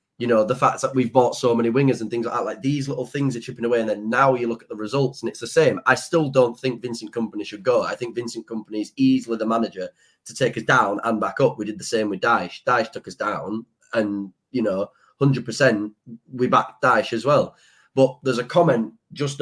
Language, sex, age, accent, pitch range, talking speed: English, male, 20-39, British, 115-140 Hz, 245 wpm